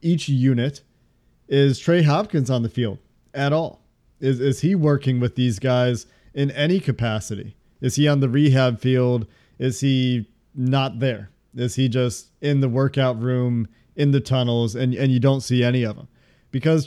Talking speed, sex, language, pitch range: 175 wpm, male, English, 125-145 Hz